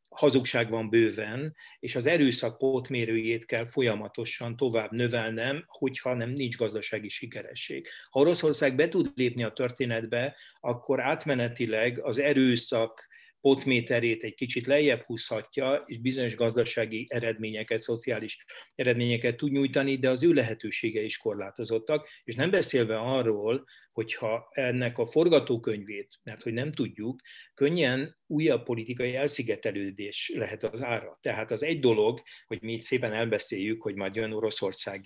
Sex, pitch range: male, 115-135 Hz